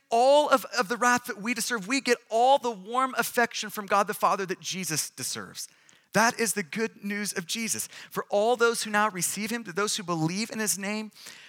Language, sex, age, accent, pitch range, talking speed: English, male, 30-49, American, 155-210 Hz, 220 wpm